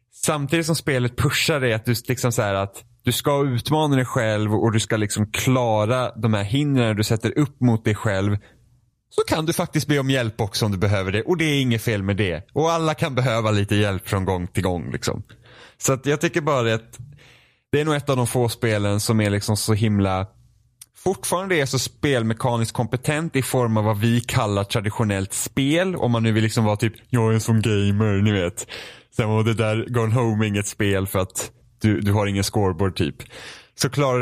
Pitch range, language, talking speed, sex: 105-130 Hz, Swedish, 210 wpm, male